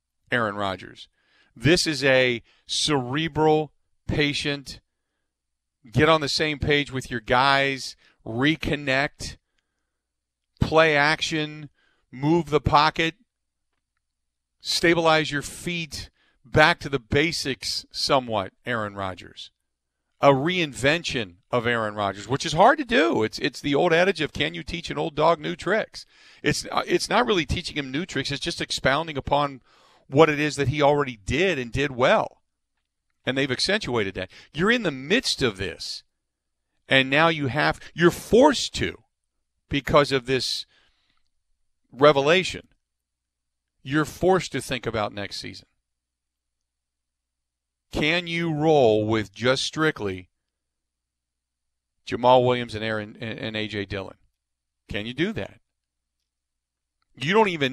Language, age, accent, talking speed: English, 40-59, American, 130 wpm